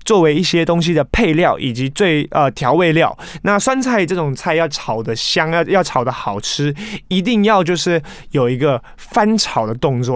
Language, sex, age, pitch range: Chinese, male, 20-39, 145-205 Hz